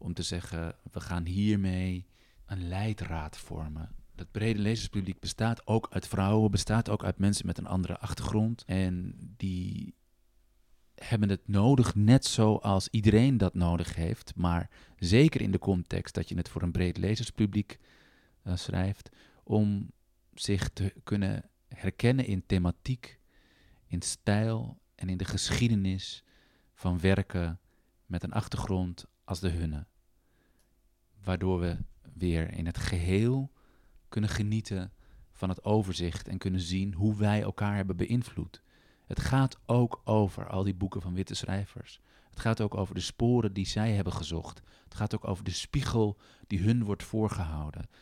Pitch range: 90-110 Hz